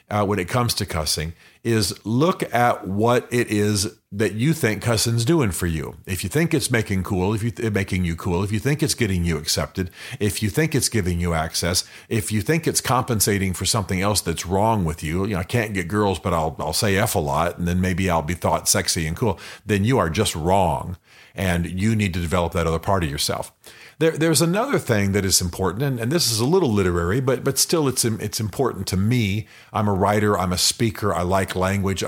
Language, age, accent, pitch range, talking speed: English, 50-69, American, 95-120 Hz, 235 wpm